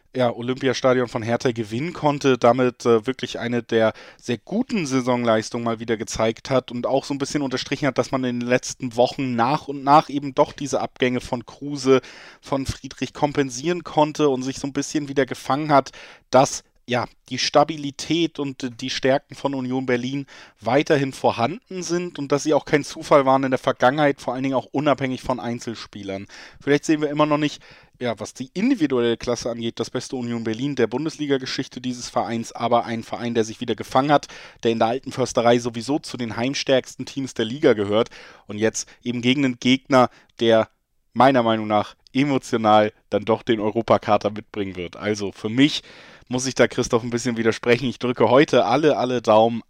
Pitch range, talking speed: 115-140 Hz, 190 wpm